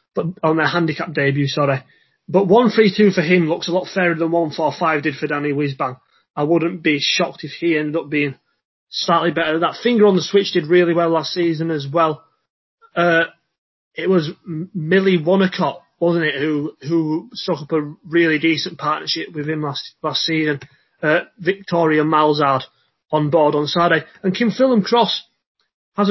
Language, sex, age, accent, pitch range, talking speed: English, male, 30-49, British, 150-185 Hz, 180 wpm